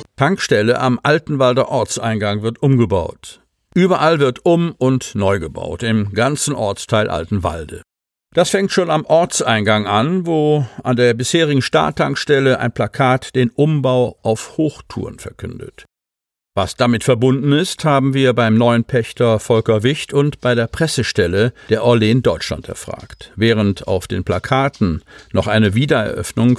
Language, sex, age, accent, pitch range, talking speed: German, male, 50-69, German, 110-140 Hz, 140 wpm